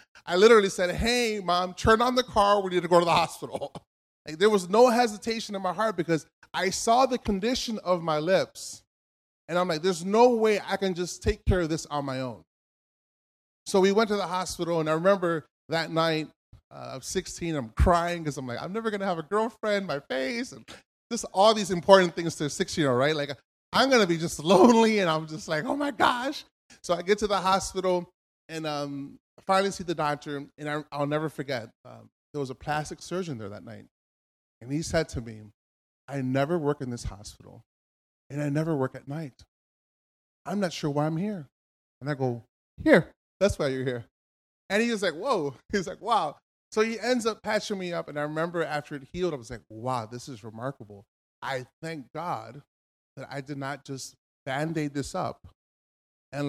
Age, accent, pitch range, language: 20-39, American, 135-190 Hz, English